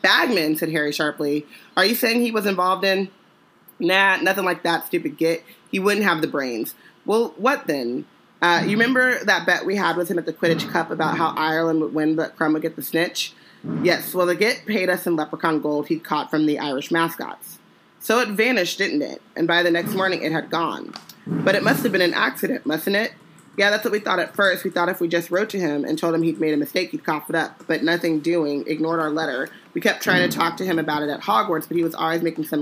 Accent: American